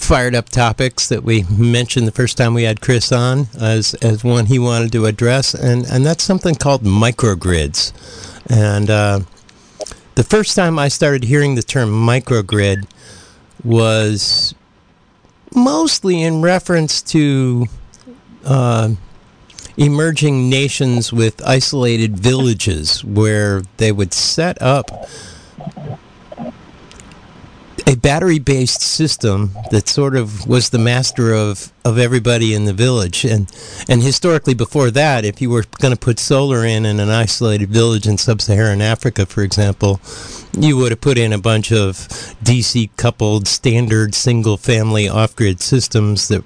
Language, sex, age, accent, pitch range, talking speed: English, male, 50-69, American, 105-125 Hz, 135 wpm